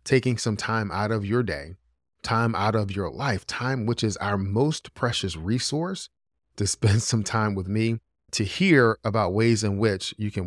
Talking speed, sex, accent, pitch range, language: 190 wpm, male, American, 95-115 Hz, English